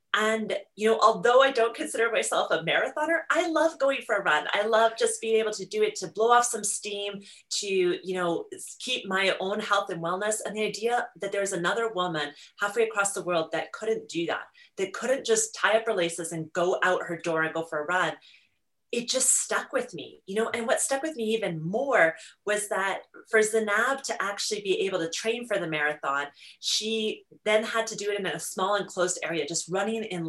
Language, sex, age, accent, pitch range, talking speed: English, female, 30-49, American, 195-260 Hz, 220 wpm